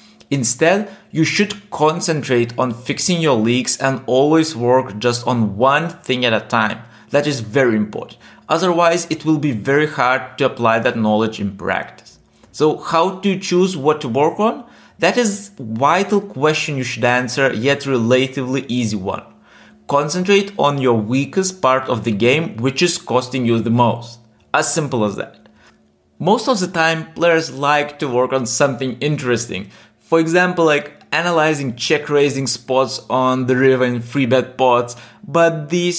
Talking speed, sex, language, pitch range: 165 wpm, male, English, 120-155 Hz